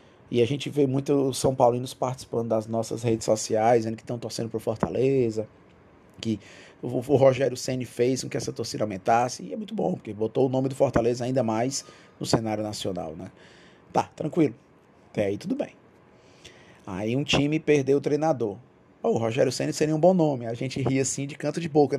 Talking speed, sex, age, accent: 200 wpm, male, 20-39, Brazilian